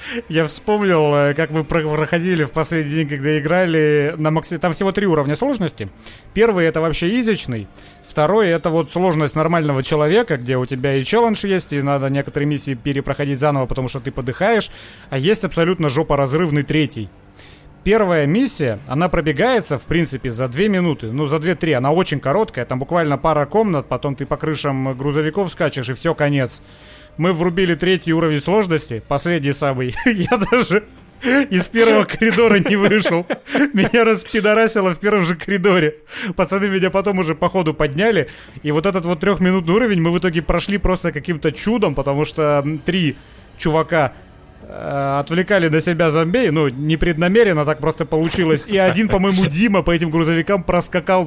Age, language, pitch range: 30-49, Russian, 145-185 Hz